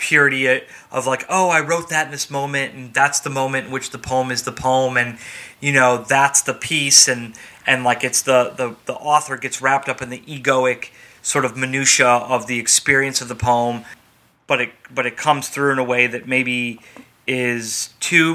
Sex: male